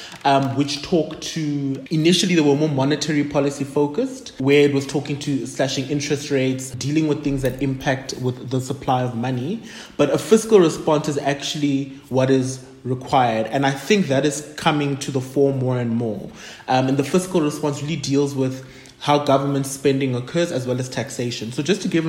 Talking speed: 190 wpm